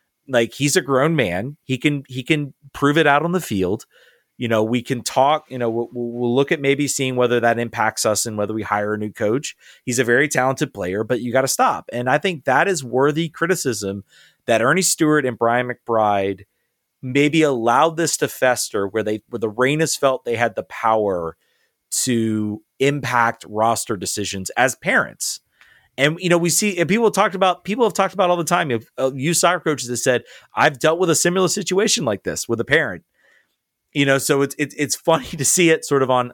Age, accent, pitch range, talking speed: 30-49, American, 120-160 Hz, 210 wpm